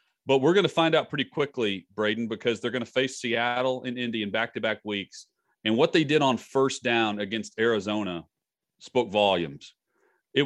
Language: English